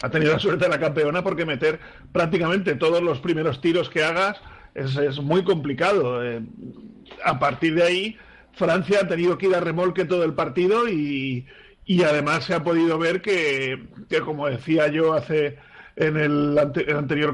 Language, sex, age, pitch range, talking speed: Spanish, male, 40-59, 150-180 Hz, 180 wpm